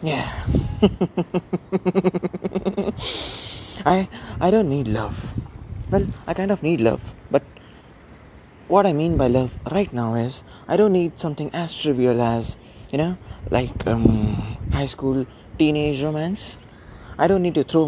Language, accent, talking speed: Hindi, native, 140 wpm